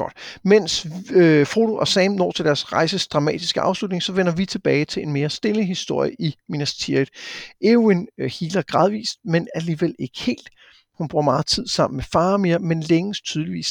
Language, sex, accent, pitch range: Danish, male, native, 145-185 Hz